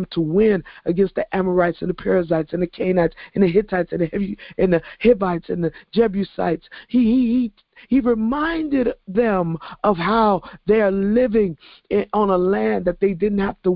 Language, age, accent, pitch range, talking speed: English, 50-69, American, 185-230 Hz, 190 wpm